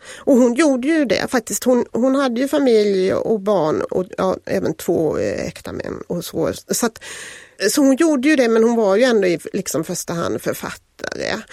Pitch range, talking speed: 175-250 Hz, 200 wpm